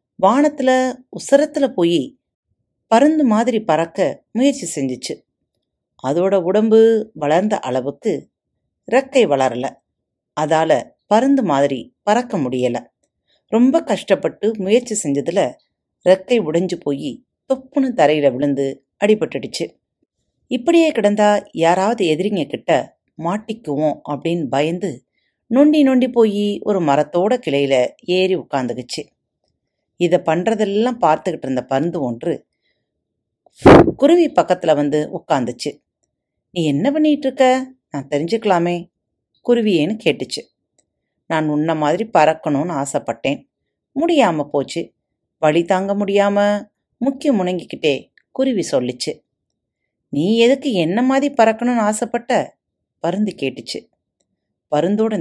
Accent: native